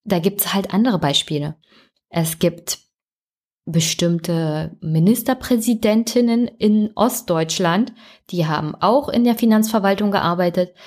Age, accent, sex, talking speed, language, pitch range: 20-39, German, female, 105 wpm, German, 170-210 Hz